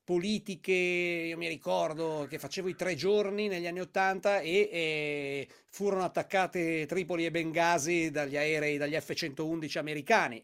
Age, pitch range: 40-59, 160-200 Hz